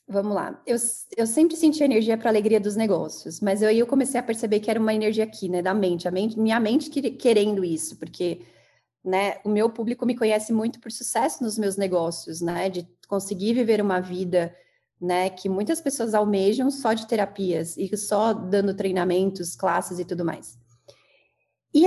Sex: female